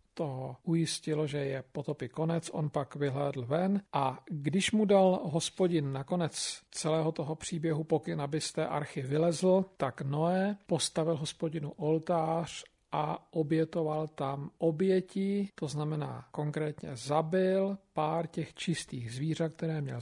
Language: Slovak